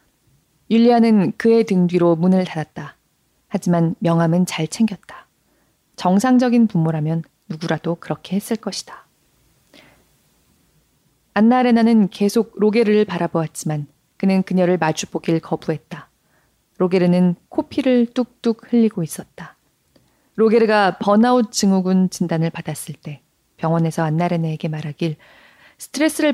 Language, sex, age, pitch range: Korean, female, 40-59, 165-225 Hz